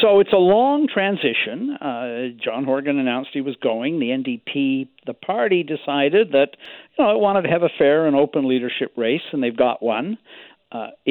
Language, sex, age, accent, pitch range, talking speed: English, male, 60-79, American, 120-170 Hz, 190 wpm